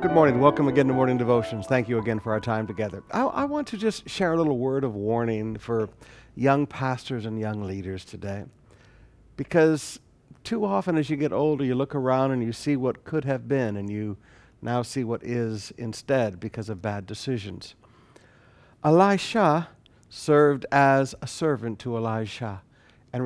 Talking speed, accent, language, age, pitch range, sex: 175 wpm, American, English, 60-79, 115-155 Hz, male